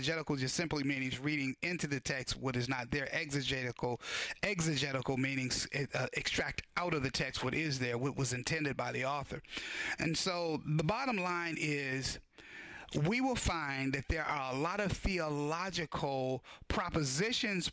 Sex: male